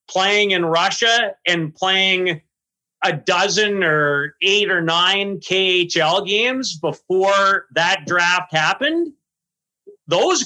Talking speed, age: 105 wpm, 30-49